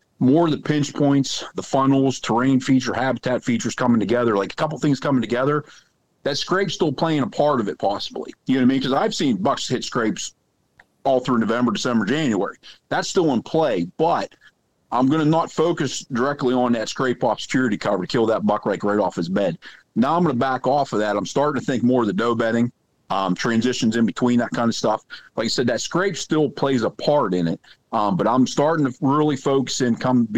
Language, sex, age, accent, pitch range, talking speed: English, male, 50-69, American, 120-140 Hz, 225 wpm